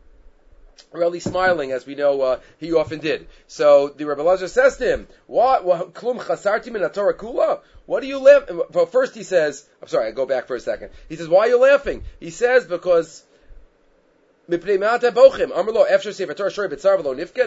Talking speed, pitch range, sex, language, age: 140 wpm, 165-280 Hz, male, English, 30-49